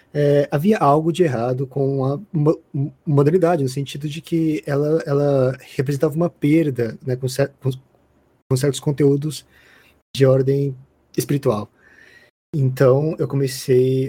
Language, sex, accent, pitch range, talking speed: Portuguese, male, Brazilian, 125-160 Hz, 125 wpm